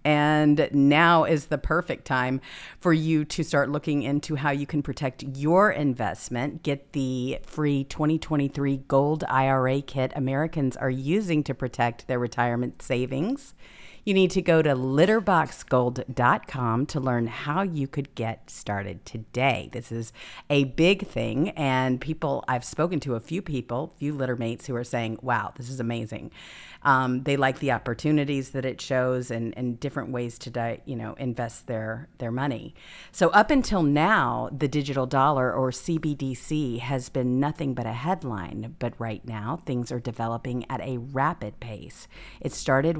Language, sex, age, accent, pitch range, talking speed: English, female, 50-69, American, 120-150 Hz, 160 wpm